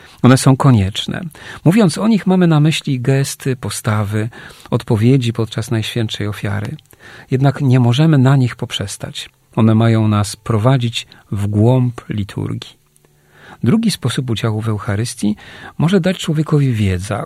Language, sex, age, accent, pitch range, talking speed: Polish, male, 40-59, native, 110-140 Hz, 130 wpm